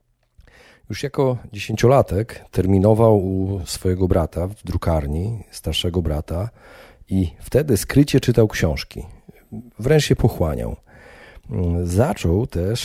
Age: 40-59